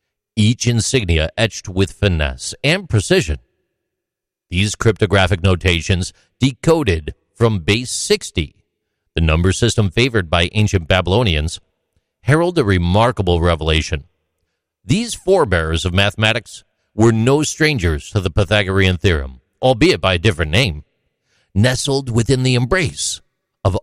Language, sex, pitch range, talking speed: English, male, 90-125 Hz, 115 wpm